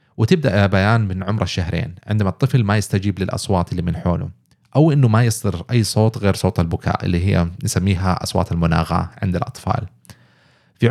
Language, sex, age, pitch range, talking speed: Arabic, male, 30-49, 90-115 Hz, 170 wpm